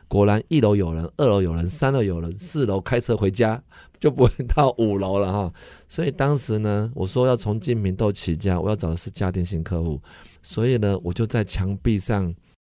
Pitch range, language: 90-115 Hz, Chinese